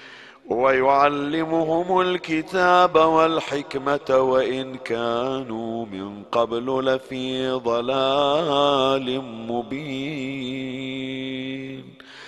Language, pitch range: Arabic, 125-140 Hz